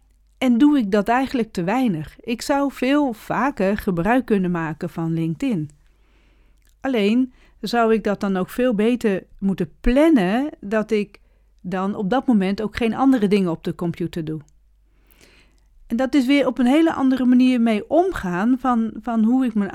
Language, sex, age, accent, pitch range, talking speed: Dutch, female, 40-59, Dutch, 195-255 Hz, 170 wpm